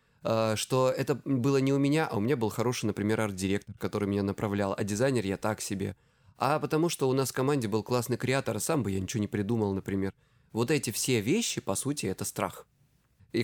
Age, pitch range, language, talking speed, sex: 20-39, 105-135 Hz, Russian, 210 wpm, male